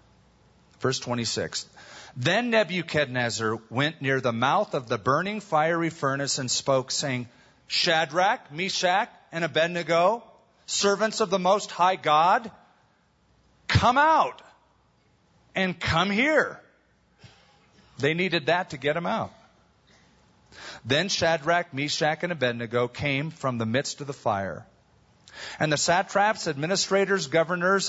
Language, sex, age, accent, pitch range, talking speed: English, male, 40-59, American, 125-180 Hz, 120 wpm